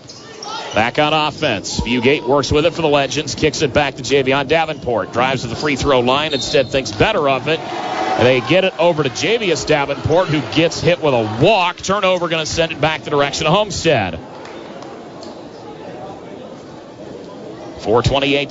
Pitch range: 130-160 Hz